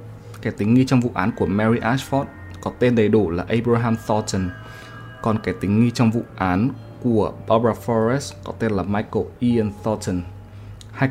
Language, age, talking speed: Vietnamese, 20-39, 180 wpm